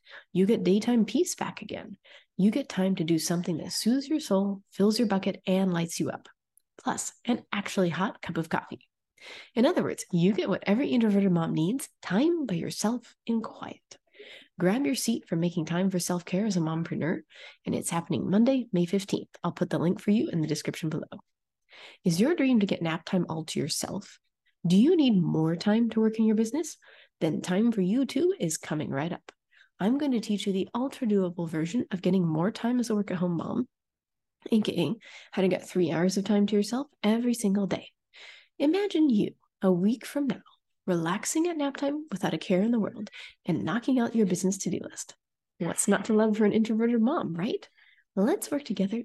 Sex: female